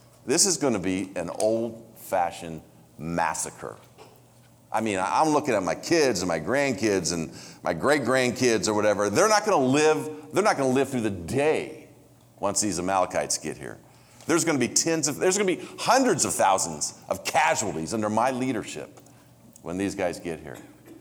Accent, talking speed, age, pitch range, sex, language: American, 185 wpm, 40-59, 95-130 Hz, male, English